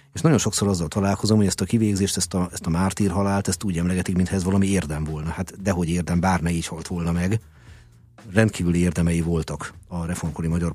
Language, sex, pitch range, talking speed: Hungarian, male, 85-105 Hz, 205 wpm